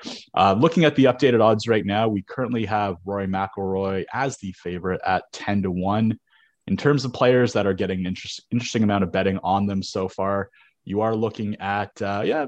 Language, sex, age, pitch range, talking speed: English, male, 20-39, 95-125 Hz, 200 wpm